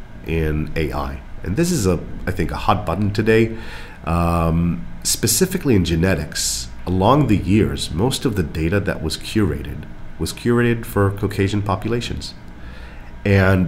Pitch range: 80-100 Hz